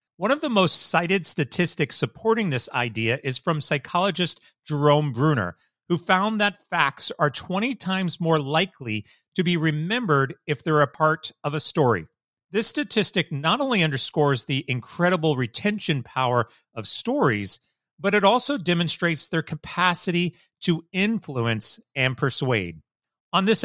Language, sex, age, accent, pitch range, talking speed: English, male, 40-59, American, 130-185 Hz, 140 wpm